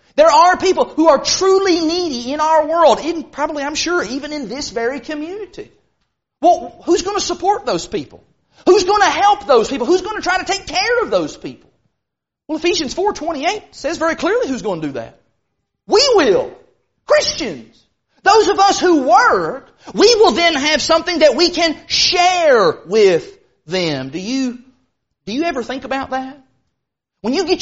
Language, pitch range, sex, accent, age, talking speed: English, 250-360 Hz, male, American, 30-49, 175 wpm